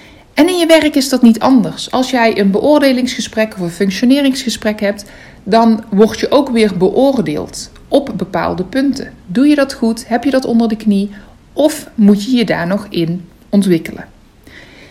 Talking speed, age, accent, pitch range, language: 175 wpm, 60-79, Dutch, 195-255 Hz, Dutch